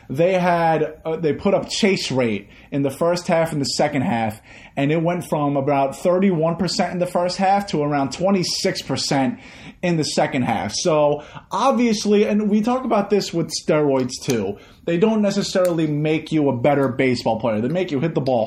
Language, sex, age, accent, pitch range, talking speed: English, male, 30-49, American, 130-180 Hz, 190 wpm